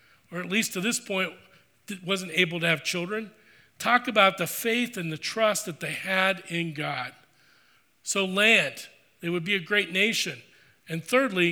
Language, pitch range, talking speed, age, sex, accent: English, 175-210 Hz, 170 wpm, 40-59, male, American